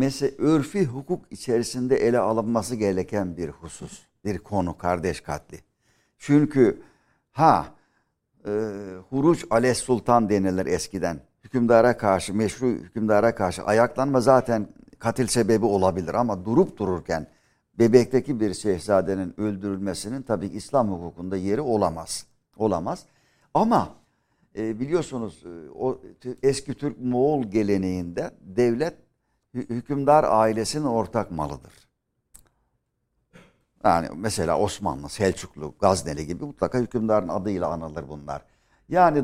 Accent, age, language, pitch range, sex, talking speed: native, 60-79, Turkish, 95-130 Hz, male, 105 wpm